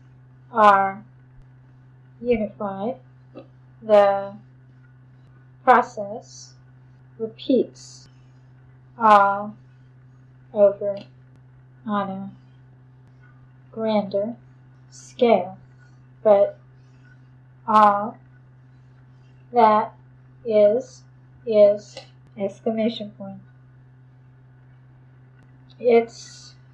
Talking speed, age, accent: 45 wpm, 30-49, American